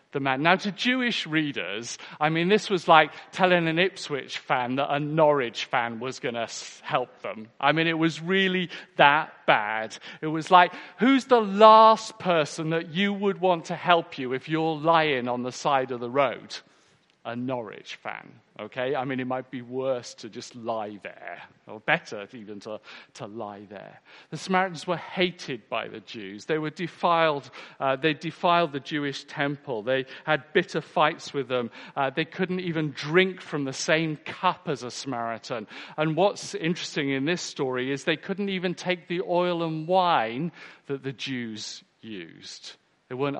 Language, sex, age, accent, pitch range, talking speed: English, male, 40-59, British, 125-170 Hz, 175 wpm